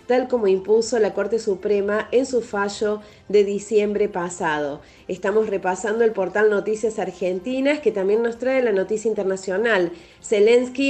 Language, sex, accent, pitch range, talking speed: Spanish, female, Argentinian, 190-230 Hz, 145 wpm